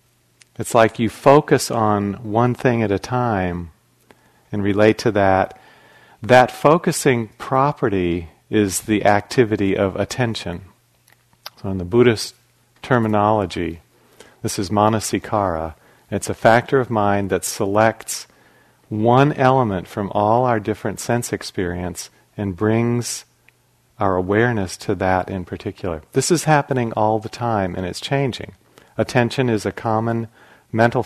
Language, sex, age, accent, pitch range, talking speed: English, male, 40-59, American, 100-120 Hz, 130 wpm